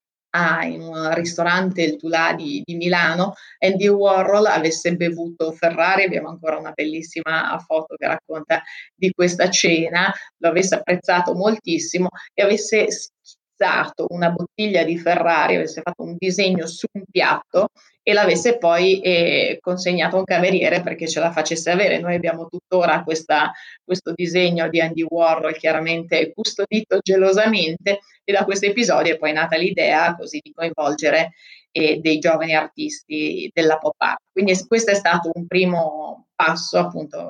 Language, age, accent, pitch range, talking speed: Italian, 30-49, native, 160-185 Hz, 145 wpm